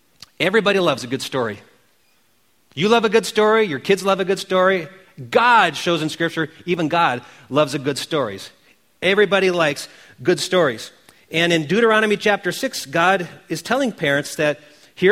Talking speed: 160 wpm